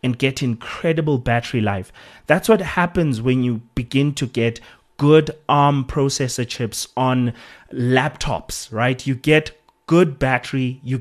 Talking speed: 140 wpm